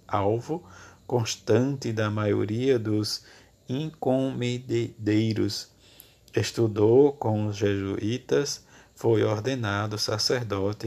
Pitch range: 100-120 Hz